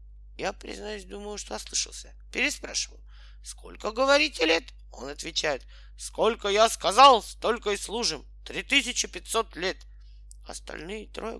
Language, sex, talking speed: Russian, male, 110 wpm